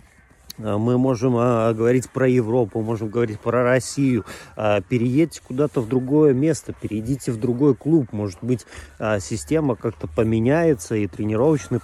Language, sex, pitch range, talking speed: Russian, male, 100-130 Hz, 125 wpm